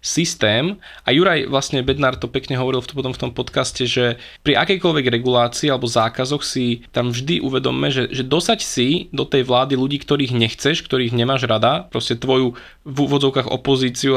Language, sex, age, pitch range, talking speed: Slovak, male, 20-39, 125-140 Hz, 180 wpm